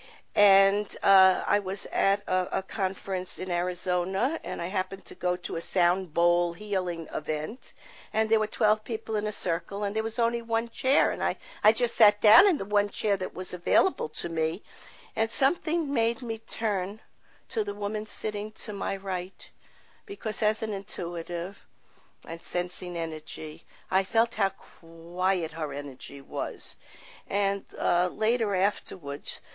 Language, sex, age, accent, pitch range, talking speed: English, female, 50-69, American, 175-220 Hz, 160 wpm